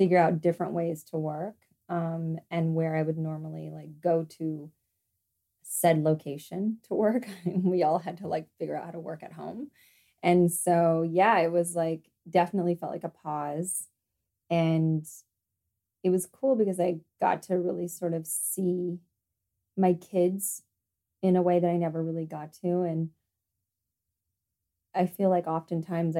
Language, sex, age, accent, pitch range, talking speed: English, female, 20-39, American, 160-180 Hz, 160 wpm